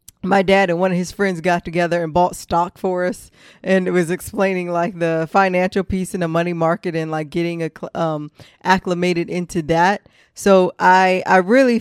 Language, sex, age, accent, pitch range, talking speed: English, female, 20-39, American, 170-205 Hz, 195 wpm